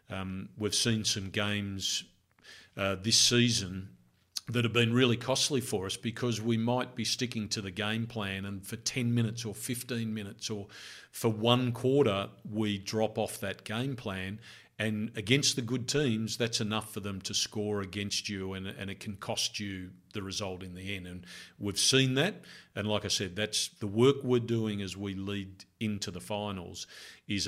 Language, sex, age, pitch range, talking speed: English, male, 50-69, 100-115 Hz, 185 wpm